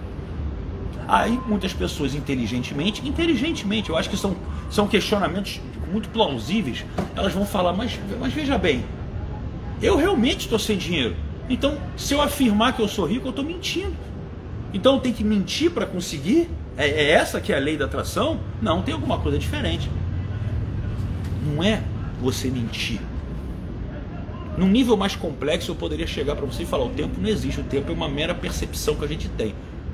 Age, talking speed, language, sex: 40-59, 170 wpm, Portuguese, male